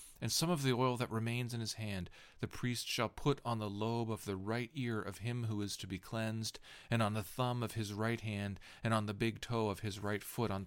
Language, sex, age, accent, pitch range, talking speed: English, male, 40-59, American, 100-125 Hz, 260 wpm